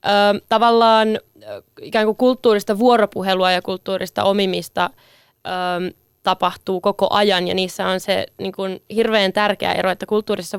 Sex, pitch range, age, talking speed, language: female, 185-205 Hz, 20-39, 135 wpm, Finnish